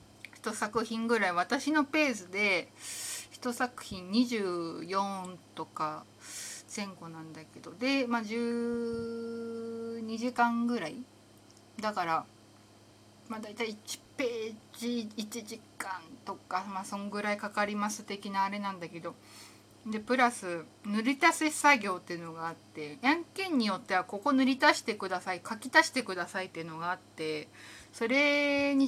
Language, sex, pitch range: Japanese, female, 165-245 Hz